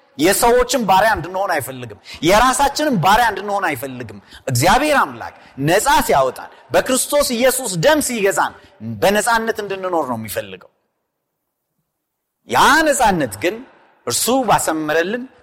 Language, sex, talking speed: Amharic, male, 100 wpm